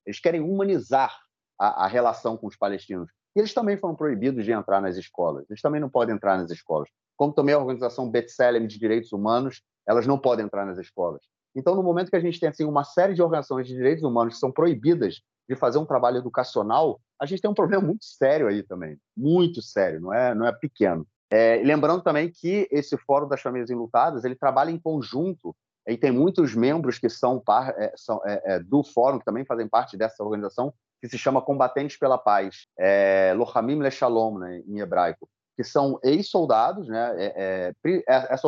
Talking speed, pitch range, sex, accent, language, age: 190 wpm, 110-150 Hz, male, Brazilian, Portuguese, 30-49